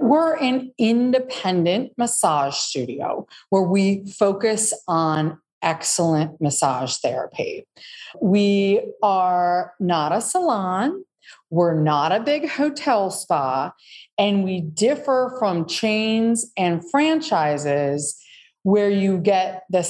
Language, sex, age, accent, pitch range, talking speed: English, female, 40-59, American, 175-240 Hz, 105 wpm